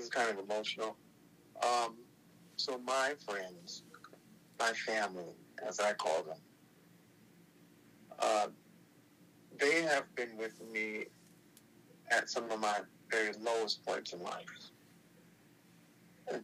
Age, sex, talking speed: 50-69, male, 110 wpm